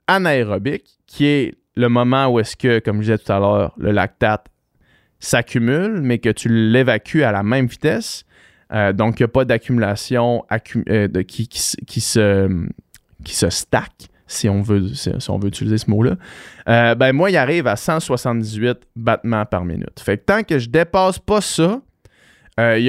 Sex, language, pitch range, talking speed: male, French, 105-130 Hz, 195 wpm